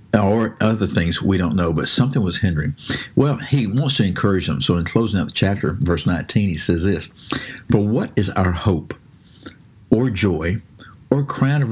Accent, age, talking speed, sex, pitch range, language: American, 50-69, 190 wpm, male, 90-120 Hz, English